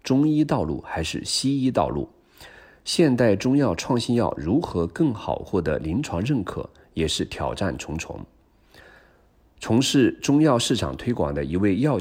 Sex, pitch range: male, 85-130 Hz